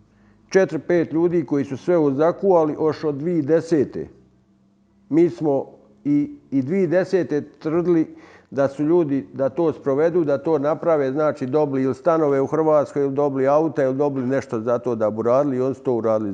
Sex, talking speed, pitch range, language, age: male, 160 wpm, 135-165 Hz, Croatian, 50-69